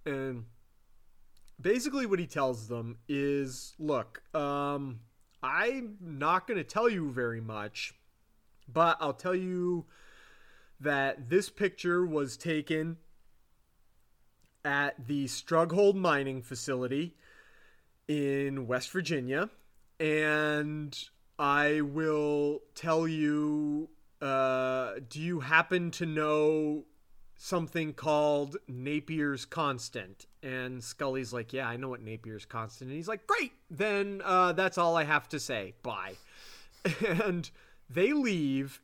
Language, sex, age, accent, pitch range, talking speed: English, male, 30-49, American, 125-165 Hz, 115 wpm